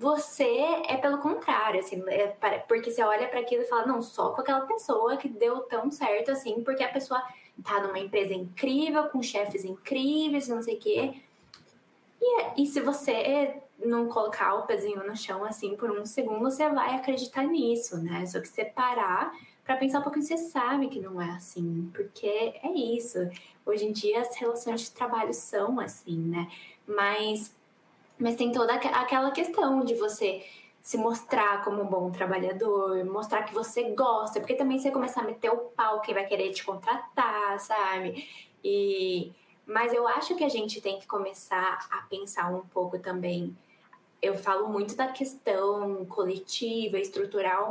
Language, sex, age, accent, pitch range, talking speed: Portuguese, female, 10-29, Brazilian, 200-265 Hz, 170 wpm